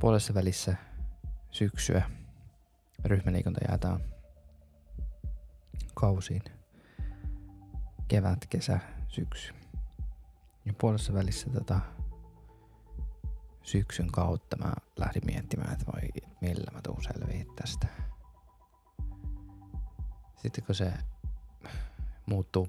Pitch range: 75-100 Hz